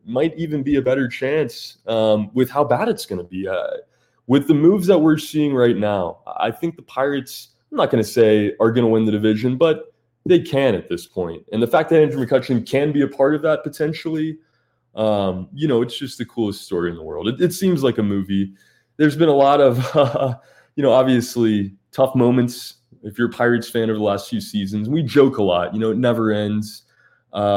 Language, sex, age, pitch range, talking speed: English, male, 20-39, 110-155 Hz, 230 wpm